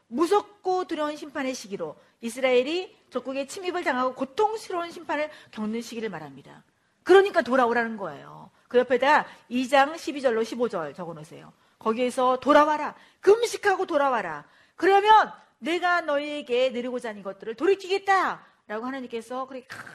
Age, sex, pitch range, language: 40-59, female, 245-340 Hz, Korean